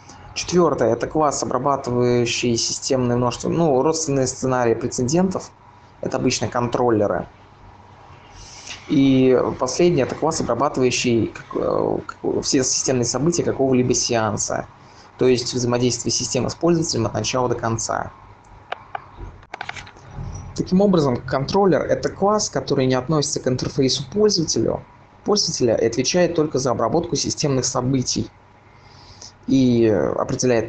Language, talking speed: Russian, 105 wpm